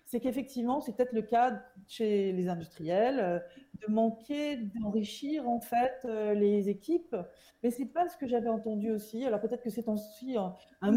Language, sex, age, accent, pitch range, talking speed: French, female, 40-59, French, 200-240 Hz, 170 wpm